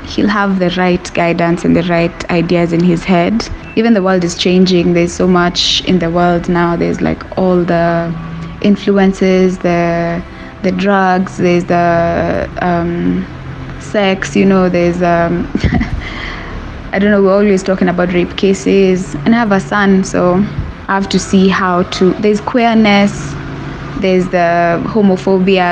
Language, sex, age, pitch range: English, female, 20-39, 170-195 Hz